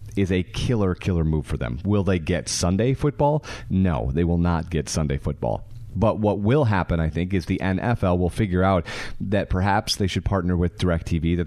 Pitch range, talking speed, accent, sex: 85-105 Hz, 205 wpm, American, male